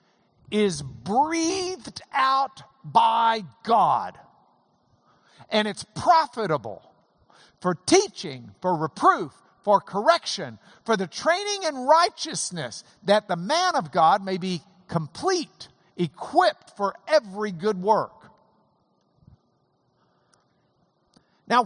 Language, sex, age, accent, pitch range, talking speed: English, male, 50-69, American, 160-255 Hz, 90 wpm